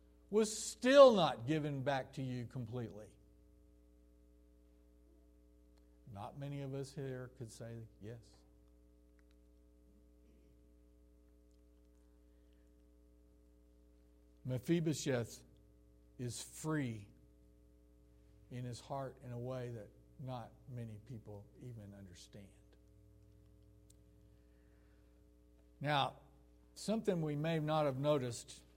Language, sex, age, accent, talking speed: English, male, 60-79, American, 80 wpm